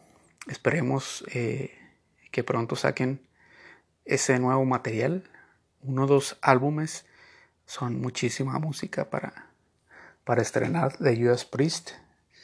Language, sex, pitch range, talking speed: Spanish, male, 115-140 Hz, 100 wpm